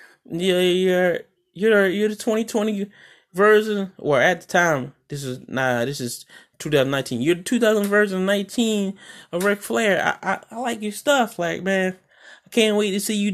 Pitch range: 135-205 Hz